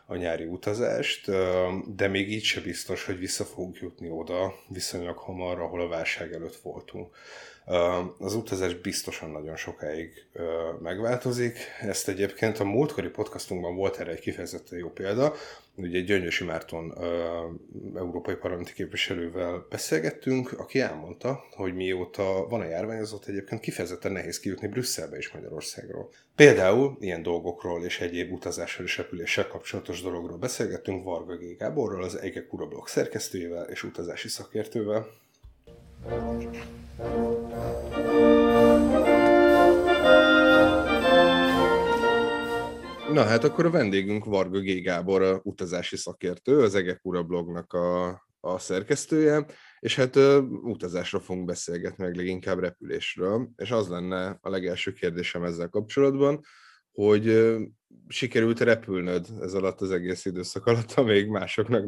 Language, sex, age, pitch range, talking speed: Hungarian, male, 30-49, 90-115 Hz, 120 wpm